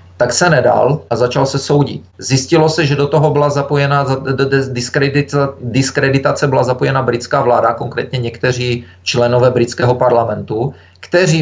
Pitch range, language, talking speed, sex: 115-135 Hz, Czech, 135 wpm, male